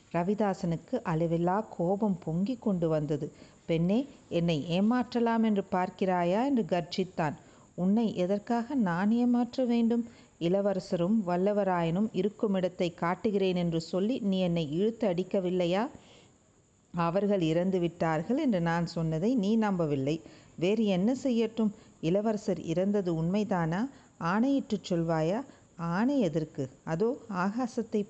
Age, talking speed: 50-69, 105 wpm